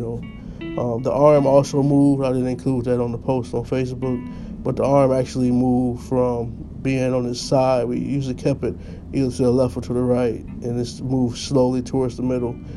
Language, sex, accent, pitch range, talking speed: English, male, American, 120-135 Hz, 200 wpm